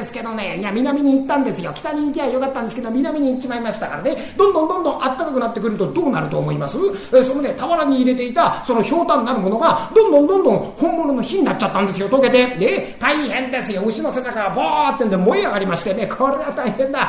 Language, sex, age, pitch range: Japanese, male, 40-59, 230-310 Hz